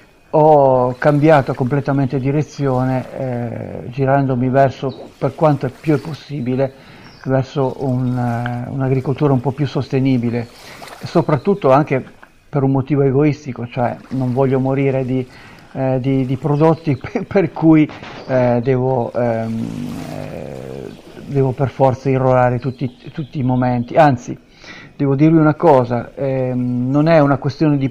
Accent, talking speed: native, 130 wpm